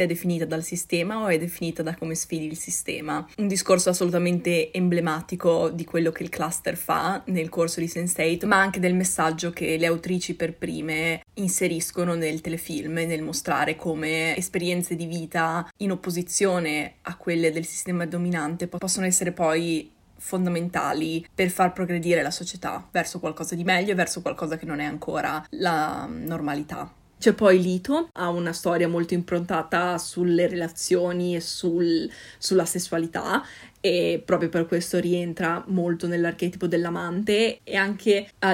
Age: 20-39